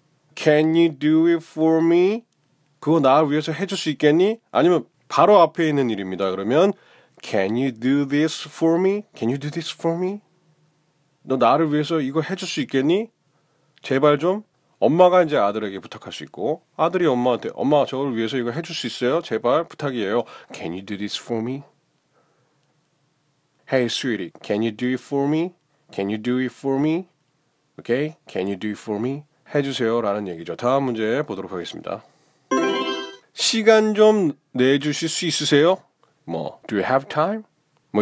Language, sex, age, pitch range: Korean, male, 30-49, 130-170 Hz